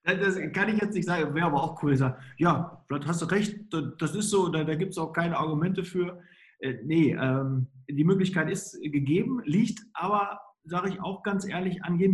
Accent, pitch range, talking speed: German, 140-175 Hz, 200 wpm